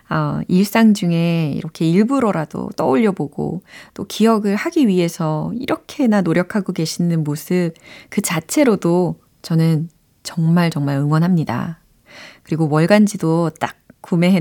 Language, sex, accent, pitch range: Korean, female, native, 160-215 Hz